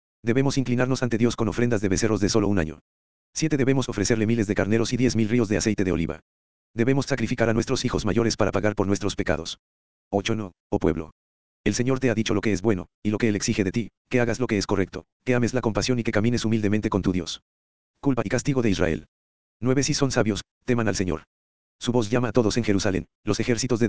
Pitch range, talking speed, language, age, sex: 90-120 Hz, 240 wpm, Spanish, 50-69, male